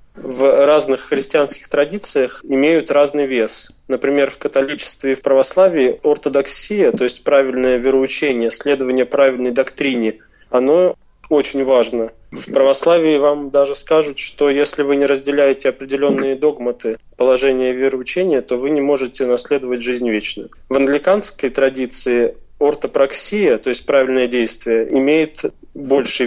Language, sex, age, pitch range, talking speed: Russian, male, 20-39, 130-155 Hz, 125 wpm